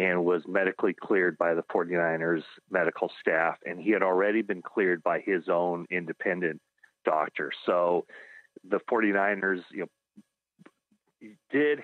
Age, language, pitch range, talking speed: 40-59, English, 90-115 Hz, 130 wpm